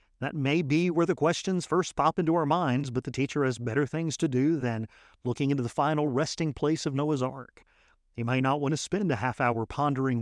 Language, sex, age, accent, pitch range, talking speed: English, male, 50-69, American, 120-155 Hz, 230 wpm